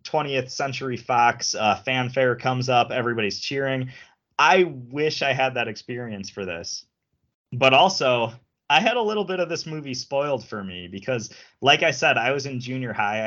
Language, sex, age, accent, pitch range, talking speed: English, male, 20-39, American, 105-145 Hz, 175 wpm